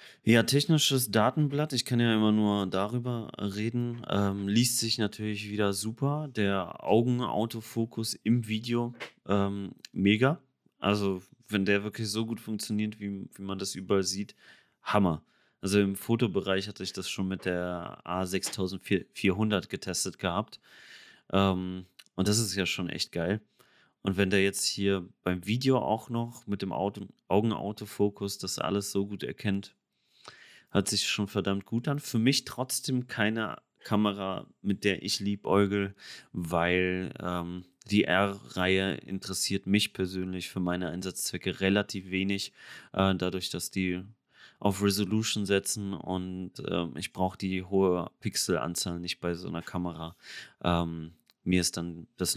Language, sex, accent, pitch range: German, male, German, 95-110 Hz